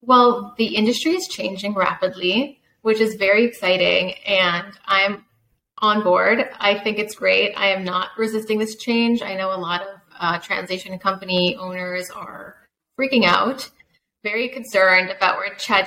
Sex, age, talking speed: female, 20-39, 155 wpm